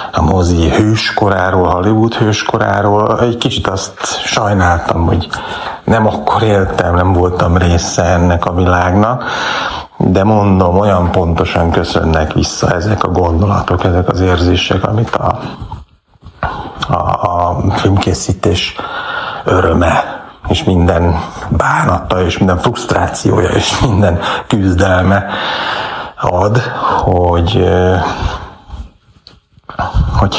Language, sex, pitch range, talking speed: Hungarian, male, 90-105 Hz, 100 wpm